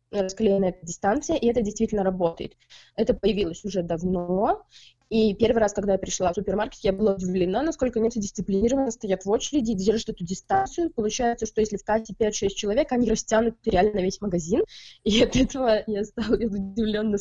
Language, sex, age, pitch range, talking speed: Russian, female, 20-39, 190-230 Hz, 165 wpm